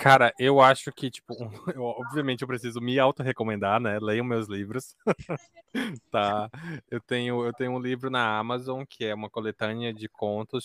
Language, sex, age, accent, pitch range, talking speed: Portuguese, male, 20-39, Brazilian, 110-135 Hz, 170 wpm